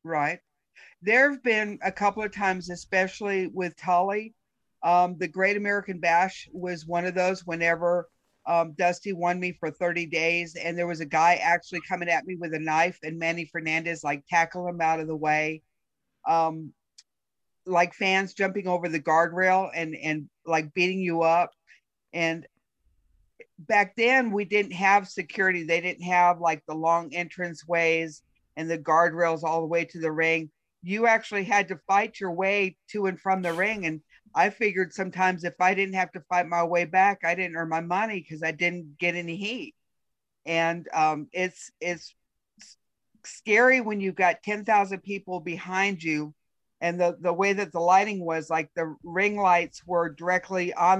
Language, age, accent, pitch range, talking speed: English, 50-69, American, 165-190 Hz, 180 wpm